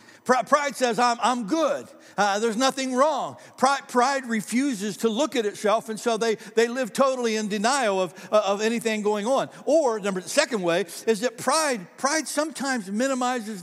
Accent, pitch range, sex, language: American, 210-260 Hz, male, English